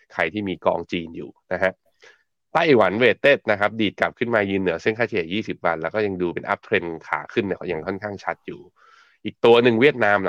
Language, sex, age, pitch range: Thai, male, 20-39, 90-110 Hz